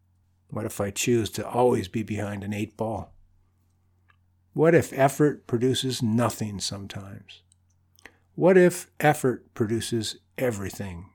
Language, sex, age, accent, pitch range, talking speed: English, male, 60-79, American, 95-135 Hz, 120 wpm